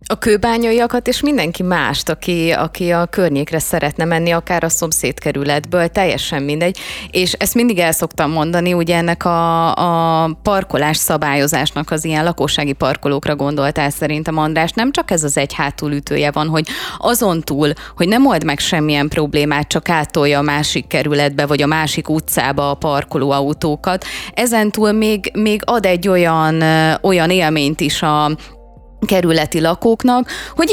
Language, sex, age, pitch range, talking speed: Hungarian, female, 30-49, 150-185 Hz, 155 wpm